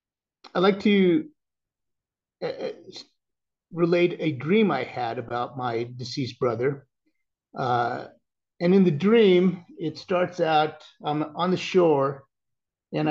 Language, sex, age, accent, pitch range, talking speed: English, male, 50-69, American, 130-180 Hz, 120 wpm